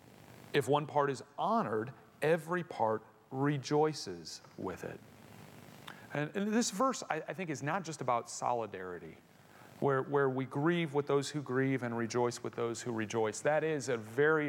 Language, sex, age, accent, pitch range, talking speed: English, male, 40-59, American, 125-175 Hz, 165 wpm